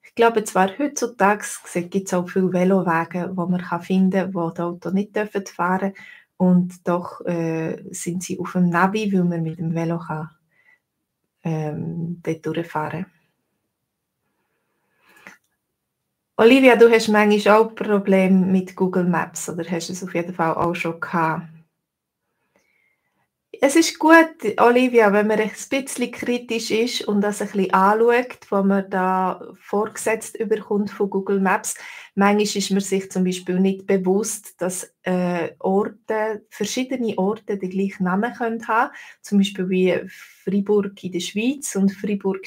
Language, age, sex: German, 20-39, female